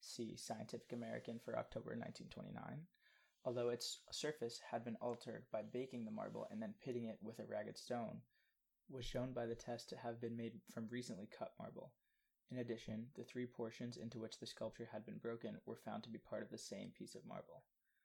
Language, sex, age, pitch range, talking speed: English, male, 20-39, 110-120 Hz, 200 wpm